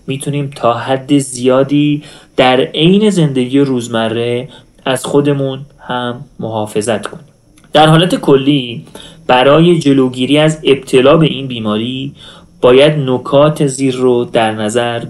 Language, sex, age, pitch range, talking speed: Persian, male, 30-49, 125-150 Hz, 115 wpm